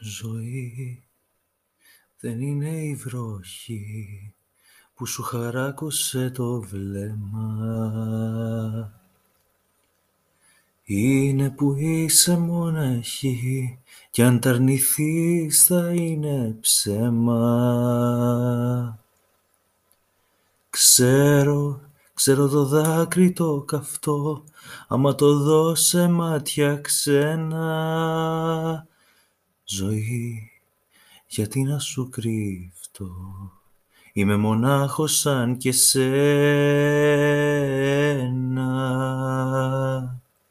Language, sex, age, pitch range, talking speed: Greek, male, 30-49, 115-150 Hz, 60 wpm